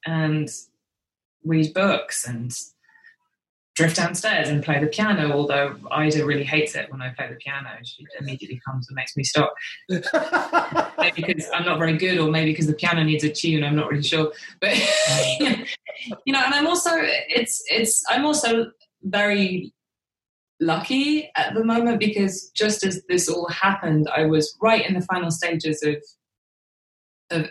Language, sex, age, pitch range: English, female, 20-39, 155-220 Hz